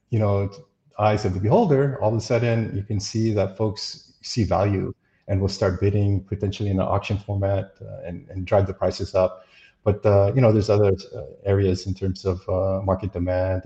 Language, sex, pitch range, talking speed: English, male, 95-110 Hz, 200 wpm